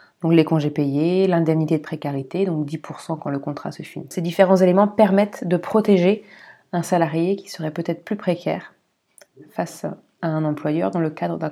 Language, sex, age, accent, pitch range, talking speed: French, female, 30-49, French, 165-190 Hz, 180 wpm